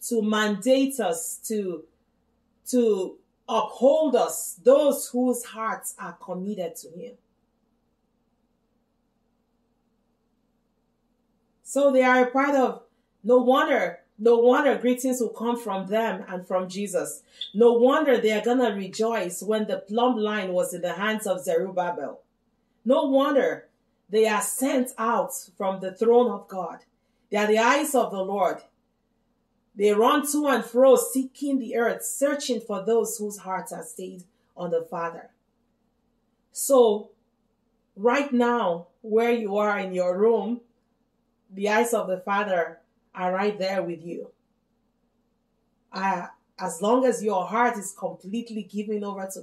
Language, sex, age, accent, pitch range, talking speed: English, female, 40-59, Nigerian, 200-240 Hz, 140 wpm